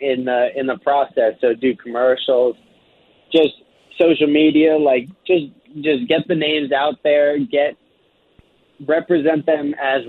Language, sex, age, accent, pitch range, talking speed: English, male, 20-39, American, 135-160 Hz, 135 wpm